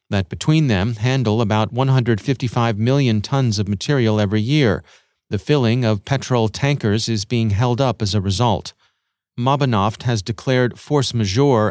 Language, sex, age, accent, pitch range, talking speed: English, male, 40-59, American, 105-130 Hz, 150 wpm